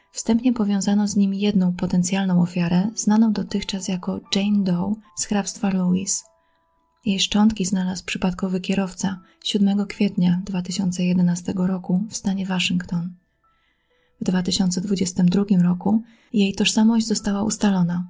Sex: female